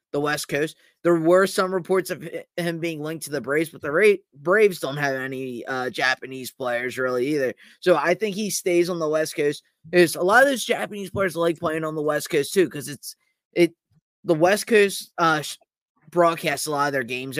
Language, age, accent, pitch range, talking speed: English, 20-39, American, 145-175 Hz, 215 wpm